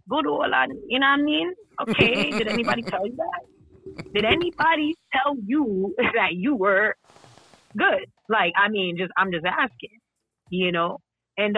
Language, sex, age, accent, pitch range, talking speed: English, female, 20-39, American, 175-230 Hz, 160 wpm